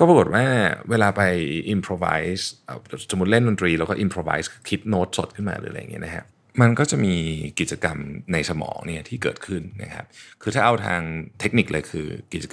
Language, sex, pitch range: Thai, male, 90-120 Hz